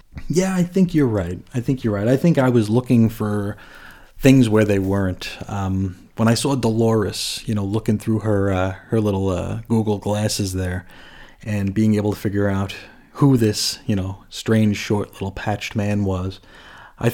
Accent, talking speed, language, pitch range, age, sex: American, 185 wpm, English, 95-120 Hz, 30-49, male